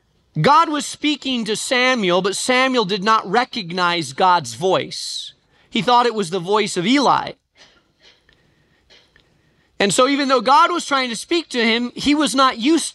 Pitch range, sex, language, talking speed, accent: 165-250 Hz, male, English, 160 wpm, American